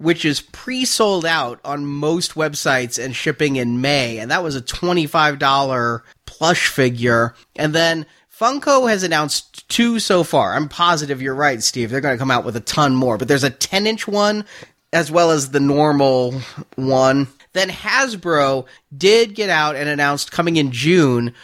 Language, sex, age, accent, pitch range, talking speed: English, male, 30-49, American, 140-180 Hz, 170 wpm